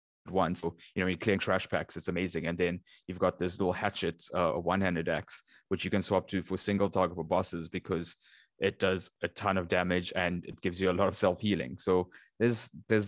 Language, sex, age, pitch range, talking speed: English, male, 20-39, 90-100 Hz, 225 wpm